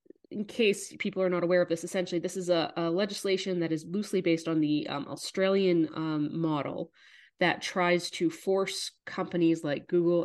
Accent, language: American, English